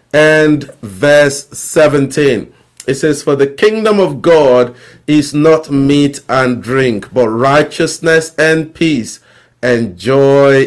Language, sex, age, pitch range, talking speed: English, male, 50-69, 130-160 Hz, 120 wpm